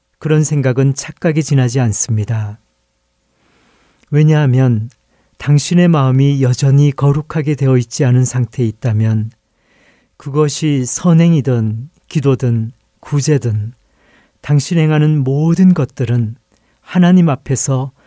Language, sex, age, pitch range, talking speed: English, male, 40-59, 120-155 Hz, 85 wpm